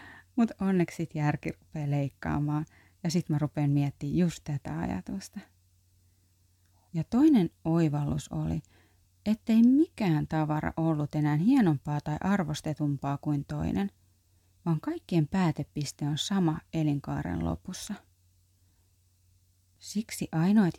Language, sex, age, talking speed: Finnish, female, 30-49, 105 wpm